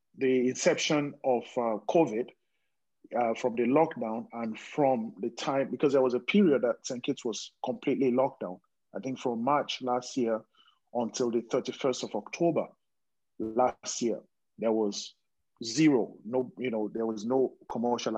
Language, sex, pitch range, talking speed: English, male, 115-140 Hz, 160 wpm